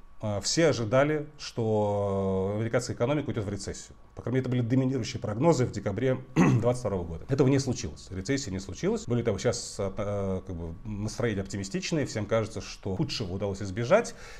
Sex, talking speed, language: male, 150 wpm, Russian